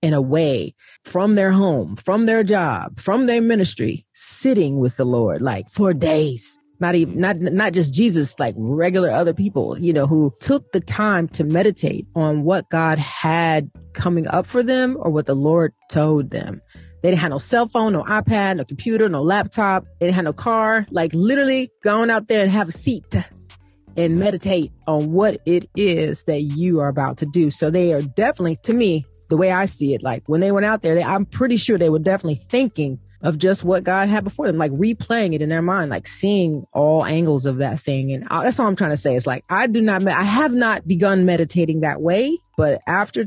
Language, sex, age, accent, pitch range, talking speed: English, female, 30-49, American, 150-195 Hz, 215 wpm